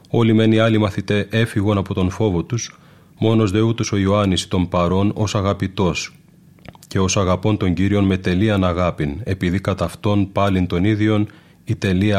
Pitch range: 95-115 Hz